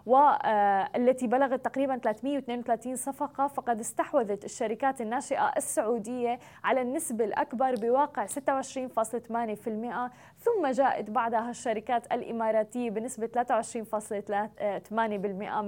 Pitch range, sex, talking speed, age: 220-270 Hz, female, 85 wpm, 20-39